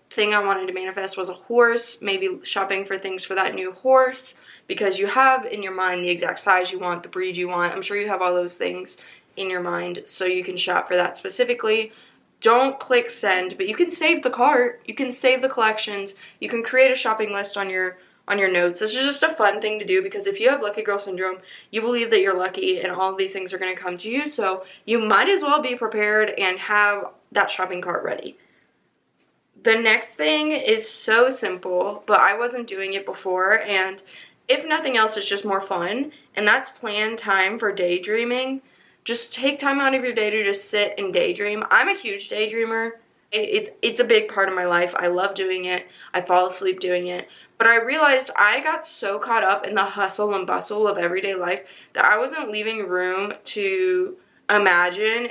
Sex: female